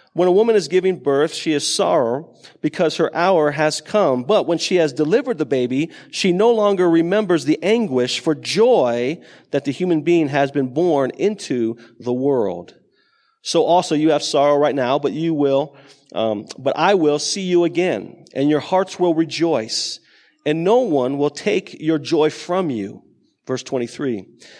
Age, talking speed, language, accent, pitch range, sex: 40-59, 175 wpm, English, American, 140-180 Hz, male